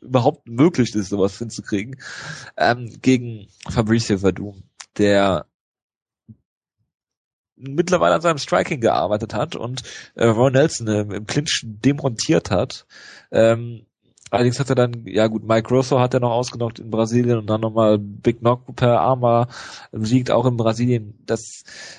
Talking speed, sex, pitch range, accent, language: 140 wpm, male, 110-130 Hz, German, German